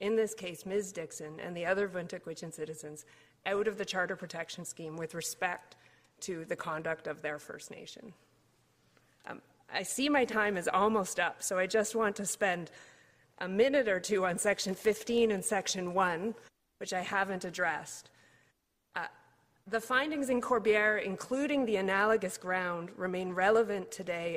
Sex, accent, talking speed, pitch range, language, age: female, American, 160 wpm, 175-210 Hz, English, 30-49